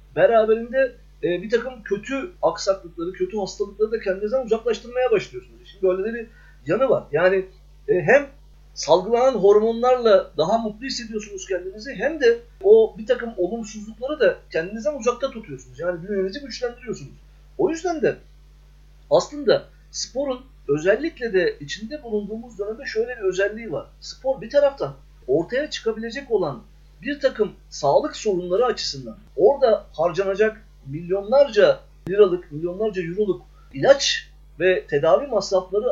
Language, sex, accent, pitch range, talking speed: Turkish, male, native, 190-275 Hz, 120 wpm